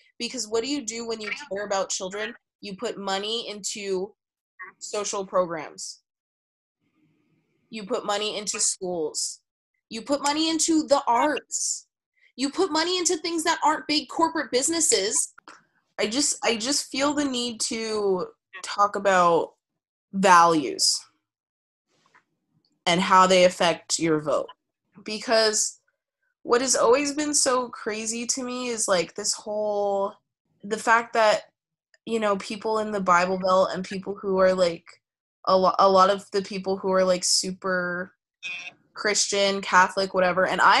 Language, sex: English, female